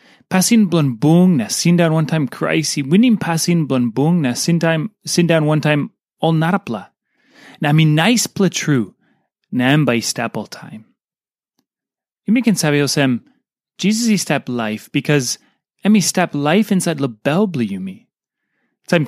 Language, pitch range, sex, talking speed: English, 135-190 Hz, male, 170 wpm